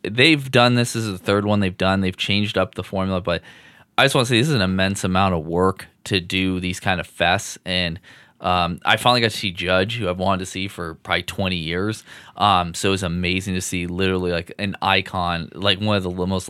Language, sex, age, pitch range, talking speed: English, male, 20-39, 90-100 Hz, 245 wpm